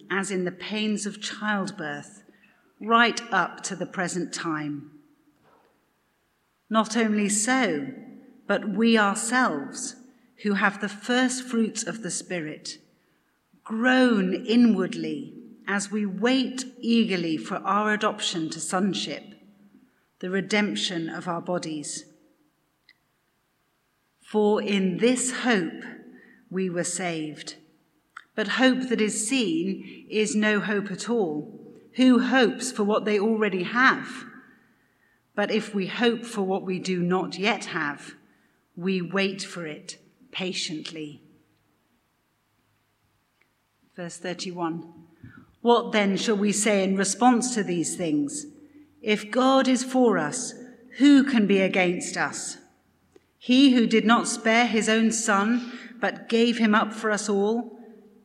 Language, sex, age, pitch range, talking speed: English, female, 40-59, 185-240 Hz, 125 wpm